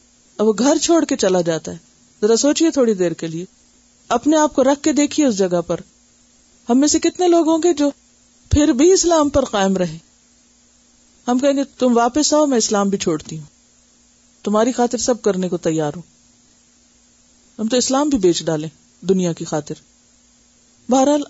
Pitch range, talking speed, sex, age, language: 180-270 Hz, 180 wpm, female, 50-69, Urdu